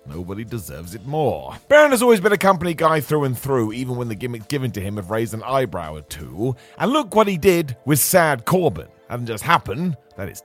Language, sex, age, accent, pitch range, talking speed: English, male, 30-49, British, 110-155 Hz, 230 wpm